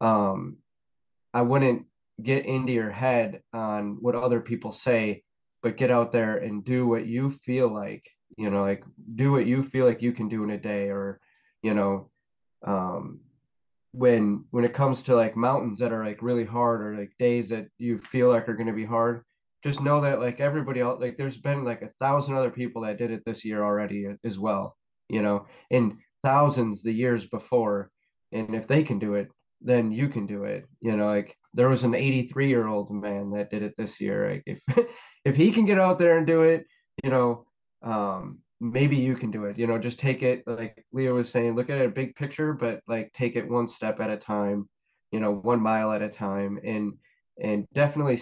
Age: 30-49